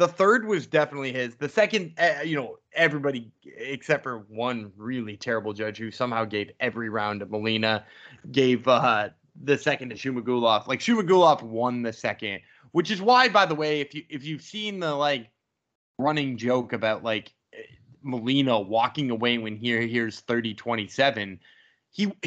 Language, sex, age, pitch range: English, male, 20-39, 120-160 Hz